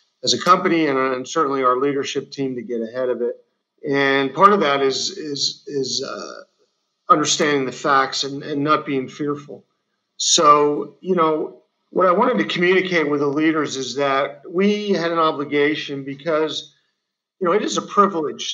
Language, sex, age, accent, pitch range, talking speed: English, male, 50-69, American, 135-165 Hz, 170 wpm